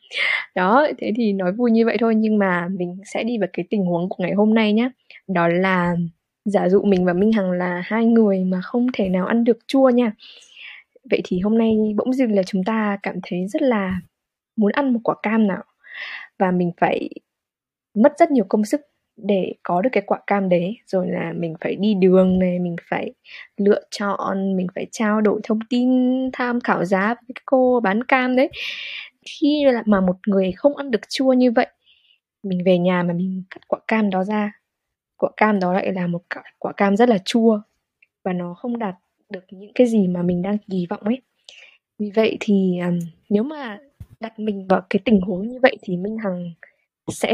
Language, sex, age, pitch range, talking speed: Vietnamese, female, 10-29, 185-235 Hz, 205 wpm